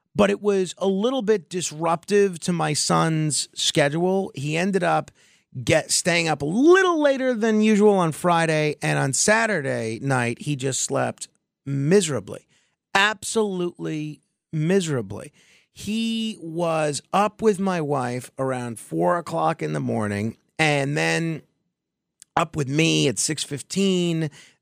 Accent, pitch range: American, 140-200 Hz